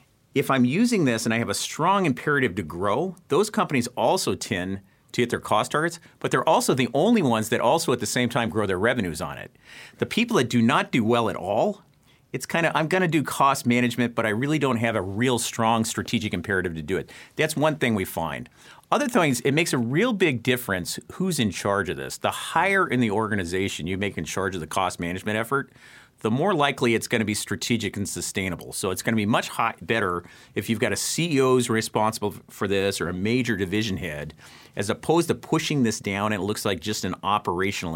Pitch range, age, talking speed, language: 100-130 Hz, 40-59, 230 wpm, English